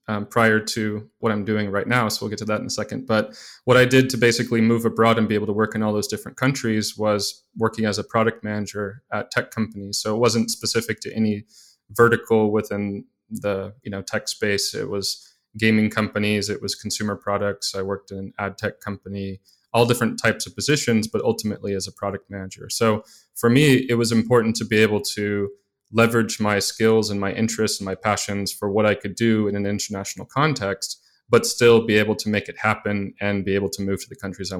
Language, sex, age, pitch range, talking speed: English, male, 20-39, 100-115 Hz, 220 wpm